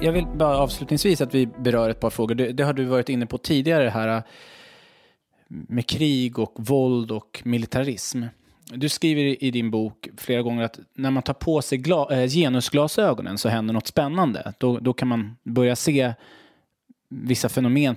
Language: English